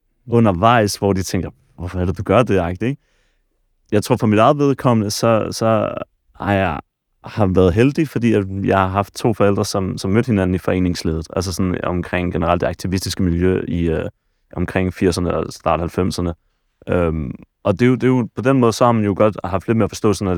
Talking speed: 210 wpm